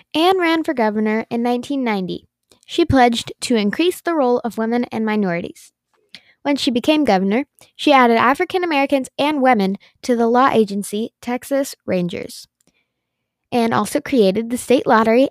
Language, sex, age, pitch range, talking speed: English, female, 10-29, 210-260 Hz, 150 wpm